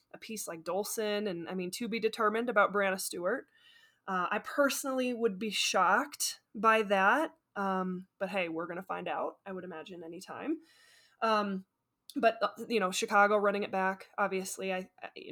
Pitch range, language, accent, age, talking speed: 190-225 Hz, English, American, 20-39, 170 wpm